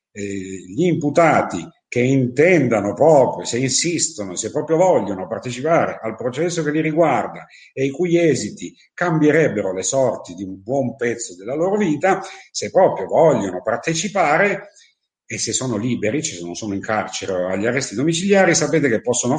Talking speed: 160 wpm